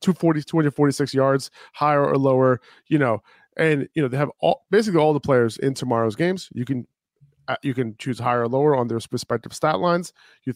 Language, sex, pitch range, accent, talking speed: English, male, 120-145 Hz, American, 200 wpm